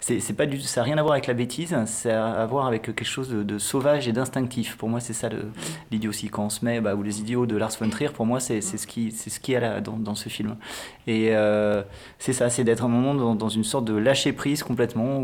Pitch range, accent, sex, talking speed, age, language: 110-130 Hz, French, male, 290 wpm, 30-49, French